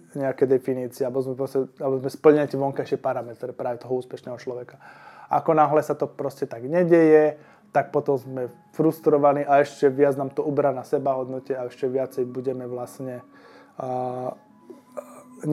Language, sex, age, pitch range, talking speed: Slovak, male, 20-39, 135-160 Hz, 160 wpm